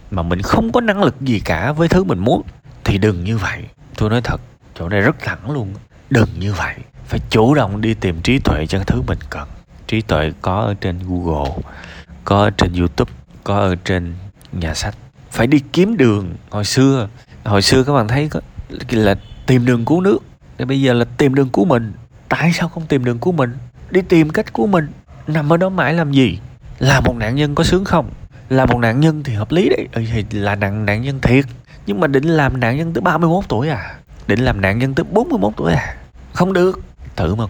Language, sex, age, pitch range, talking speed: Vietnamese, male, 20-39, 90-140 Hz, 220 wpm